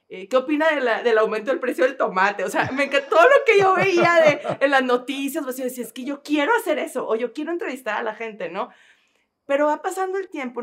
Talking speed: 255 wpm